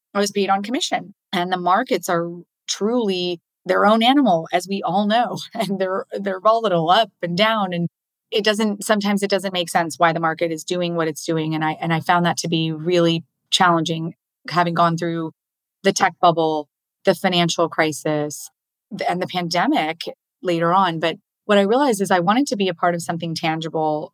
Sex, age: female, 30-49